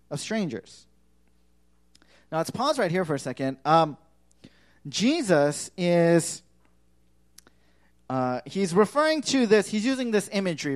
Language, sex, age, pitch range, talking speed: English, male, 30-49, 145-185 Hz, 115 wpm